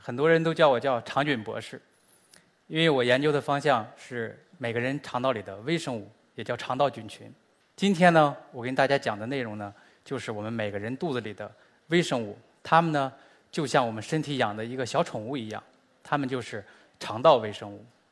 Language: Chinese